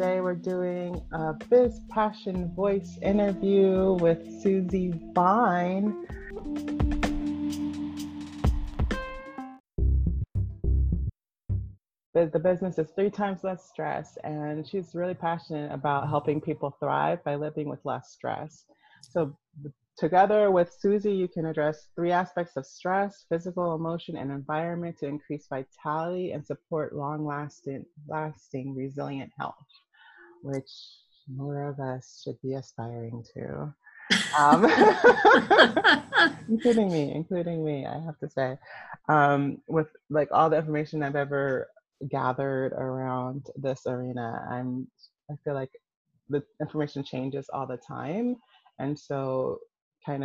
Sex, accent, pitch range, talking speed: female, American, 135-180 Hz, 115 wpm